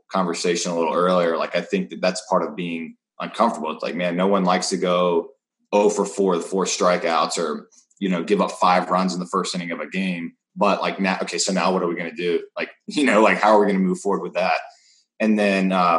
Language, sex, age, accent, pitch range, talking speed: English, male, 20-39, American, 85-100 Hz, 260 wpm